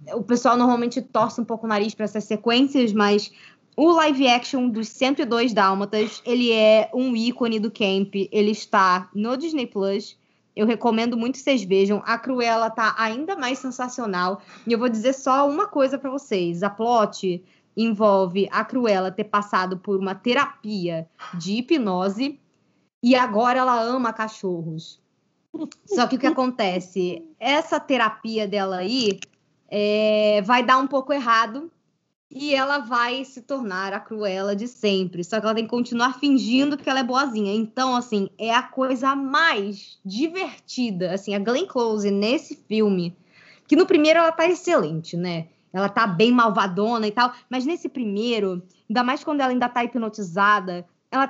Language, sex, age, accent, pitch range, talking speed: Portuguese, female, 20-39, Brazilian, 205-260 Hz, 160 wpm